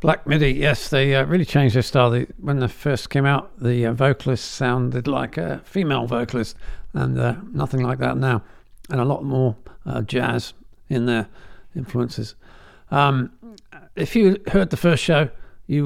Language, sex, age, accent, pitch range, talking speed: English, male, 50-69, British, 120-145 Hz, 175 wpm